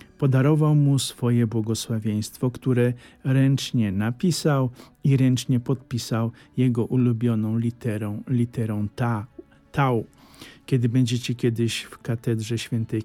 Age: 50-69